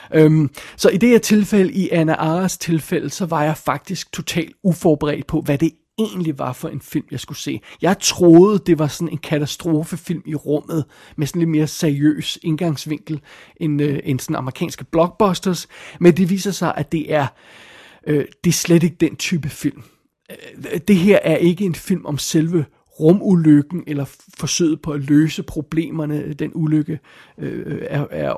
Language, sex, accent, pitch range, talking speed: Danish, male, native, 150-180 Hz, 165 wpm